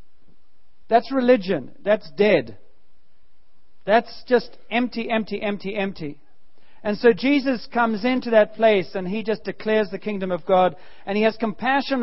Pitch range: 190-230 Hz